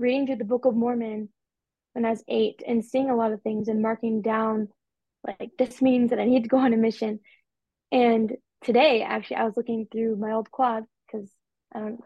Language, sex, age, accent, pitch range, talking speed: English, female, 20-39, American, 215-245 Hz, 215 wpm